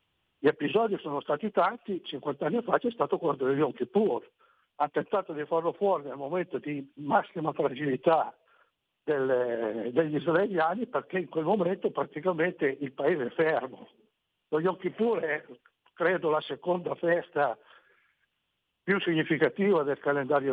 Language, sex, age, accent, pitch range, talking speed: Italian, male, 60-79, native, 145-180 Hz, 140 wpm